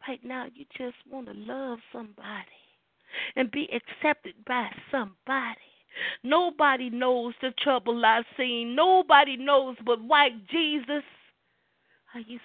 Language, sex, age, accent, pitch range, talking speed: English, female, 40-59, American, 250-320 Hz, 125 wpm